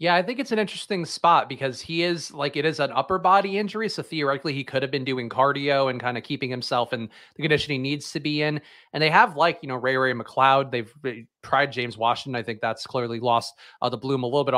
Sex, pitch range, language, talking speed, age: male, 125-160 Hz, English, 255 wpm, 30-49